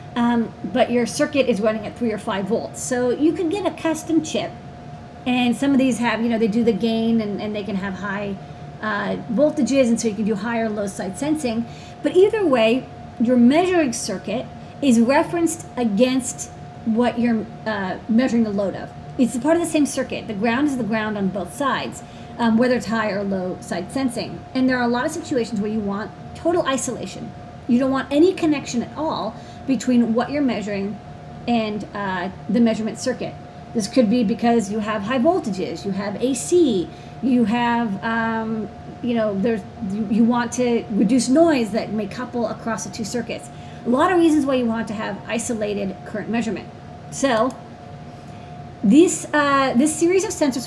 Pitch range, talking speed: 220-265 Hz, 195 wpm